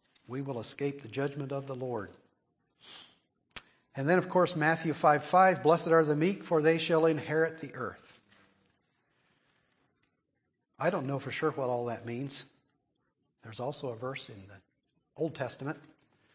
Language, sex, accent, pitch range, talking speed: English, male, American, 135-160 Hz, 150 wpm